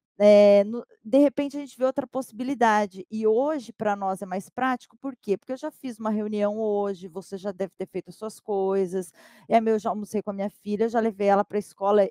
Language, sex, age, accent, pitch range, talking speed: Portuguese, female, 20-39, Brazilian, 195-245 Hz, 230 wpm